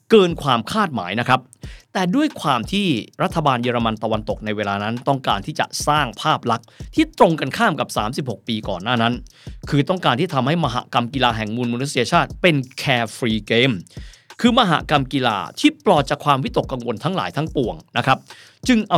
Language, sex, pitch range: Thai, male, 120-170 Hz